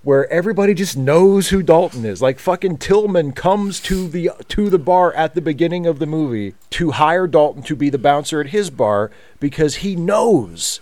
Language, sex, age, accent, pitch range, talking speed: English, male, 40-59, American, 130-195 Hz, 195 wpm